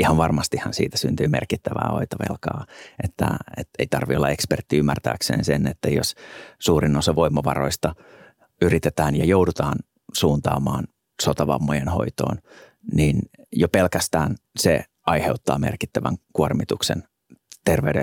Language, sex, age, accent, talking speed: Finnish, male, 30-49, native, 110 wpm